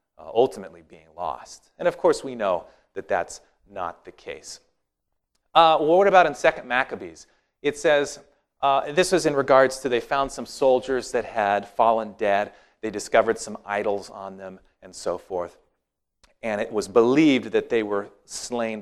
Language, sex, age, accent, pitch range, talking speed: English, male, 40-59, American, 110-160 Hz, 170 wpm